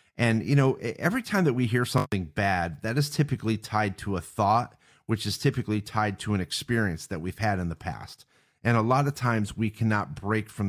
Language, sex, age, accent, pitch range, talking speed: English, male, 40-59, American, 100-130 Hz, 220 wpm